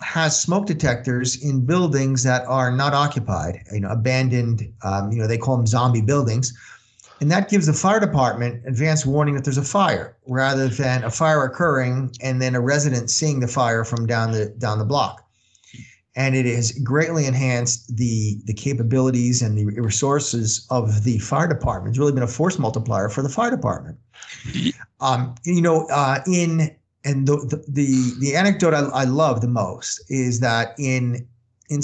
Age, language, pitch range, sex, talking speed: 40-59, English, 120-155 Hz, male, 175 wpm